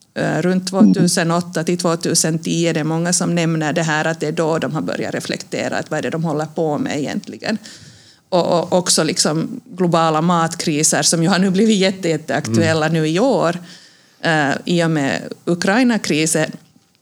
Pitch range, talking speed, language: 155-185 Hz, 170 wpm, Swedish